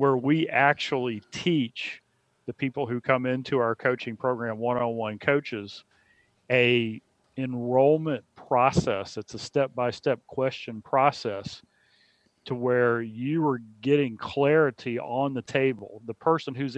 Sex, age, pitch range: male, 40-59, 120-145 Hz